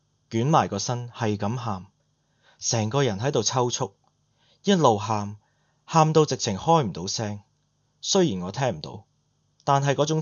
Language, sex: Chinese, male